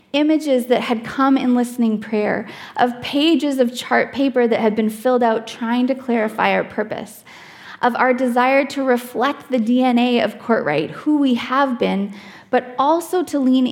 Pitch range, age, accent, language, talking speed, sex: 215-255 Hz, 20-39, American, English, 170 wpm, female